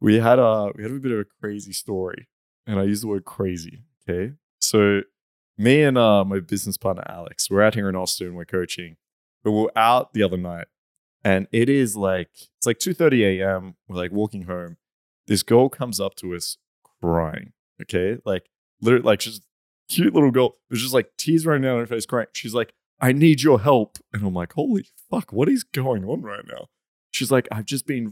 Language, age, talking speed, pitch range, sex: English, 20-39, 210 wpm, 100-145 Hz, male